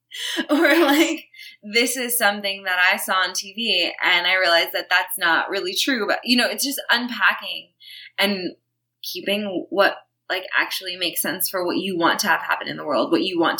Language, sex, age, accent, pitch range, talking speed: English, female, 20-39, American, 170-255 Hz, 195 wpm